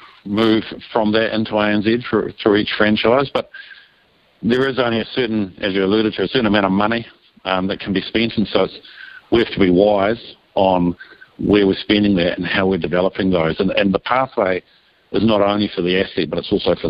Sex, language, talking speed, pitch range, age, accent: male, English, 215 wpm, 95-105 Hz, 50-69, Australian